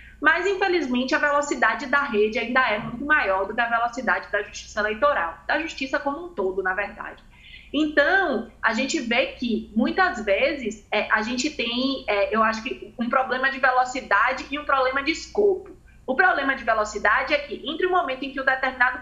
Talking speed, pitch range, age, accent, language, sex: 185 wpm, 210-290 Hz, 20-39, Brazilian, Portuguese, female